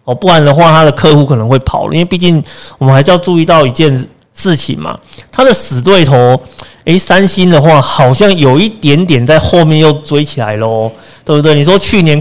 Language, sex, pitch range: Chinese, male, 125-160 Hz